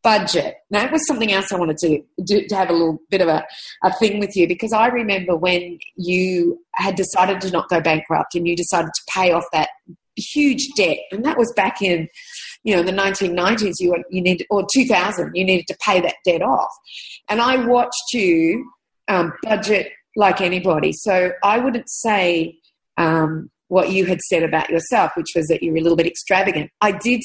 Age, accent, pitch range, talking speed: 40-59, Australian, 175-230 Hz, 205 wpm